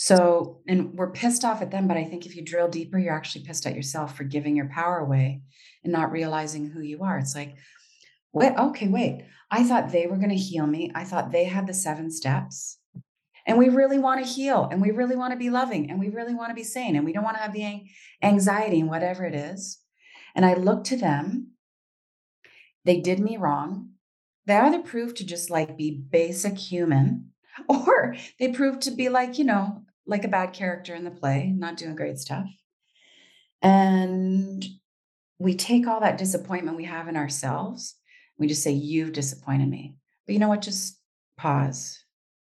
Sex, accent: female, American